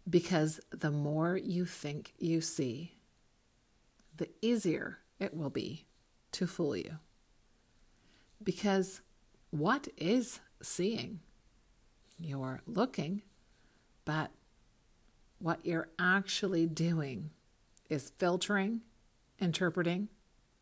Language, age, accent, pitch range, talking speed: English, 50-69, American, 165-210 Hz, 85 wpm